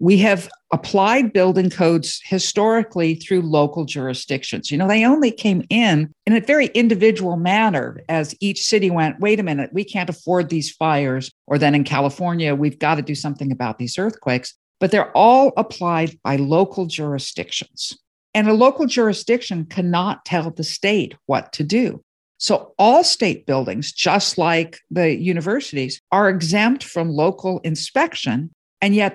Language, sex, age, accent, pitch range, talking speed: English, female, 50-69, American, 155-205 Hz, 160 wpm